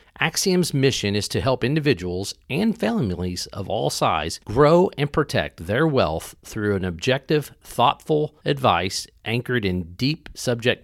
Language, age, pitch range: English, 40-59, 95-145 Hz